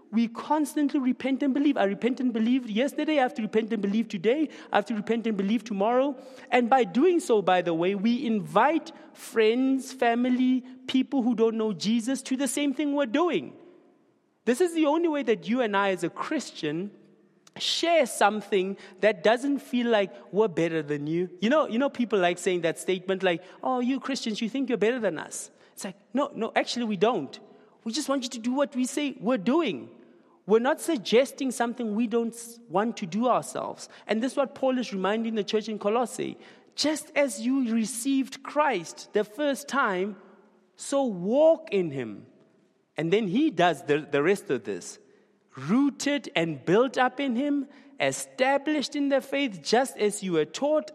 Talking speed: 190 wpm